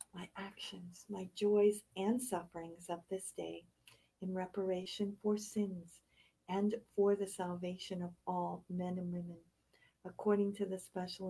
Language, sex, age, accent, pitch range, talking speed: English, female, 50-69, American, 155-185 Hz, 140 wpm